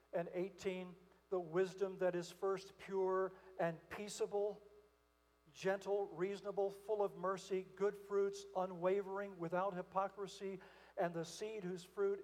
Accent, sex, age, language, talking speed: American, male, 60-79, English, 125 wpm